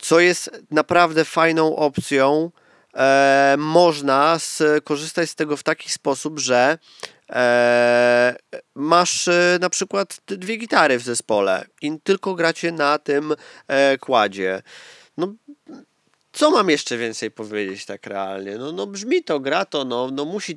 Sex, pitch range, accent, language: male, 130-175 Hz, native, Polish